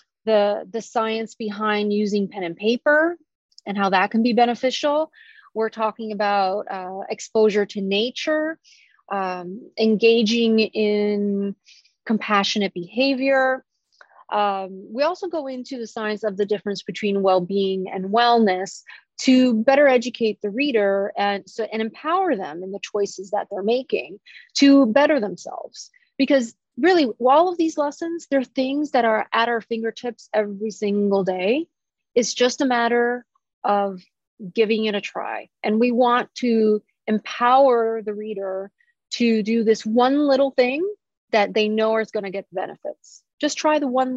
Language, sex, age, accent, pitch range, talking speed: English, female, 30-49, American, 205-260 Hz, 145 wpm